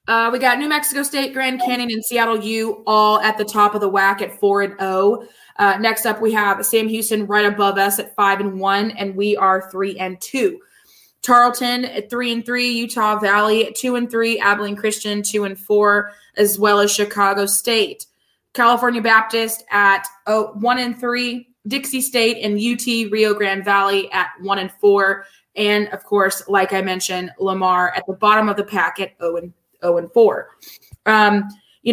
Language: English